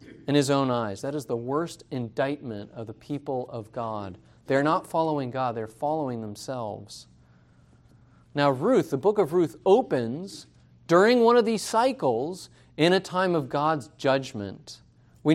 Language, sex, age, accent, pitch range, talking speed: English, male, 40-59, American, 130-190 Hz, 155 wpm